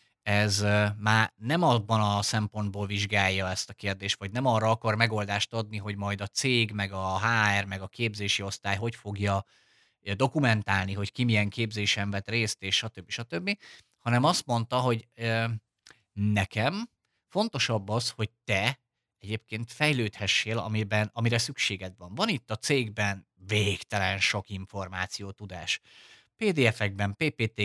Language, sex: Hungarian, male